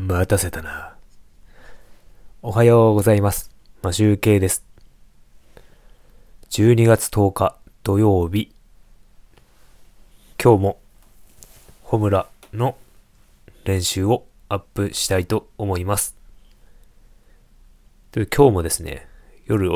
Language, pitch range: Japanese, 90-110 Hz